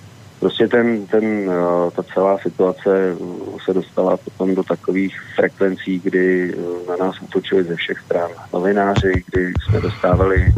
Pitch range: 90-95 Hz